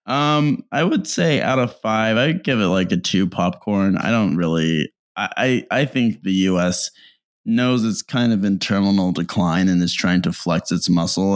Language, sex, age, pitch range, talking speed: English, male, 20-39, 90-110 Hz, 195 wpm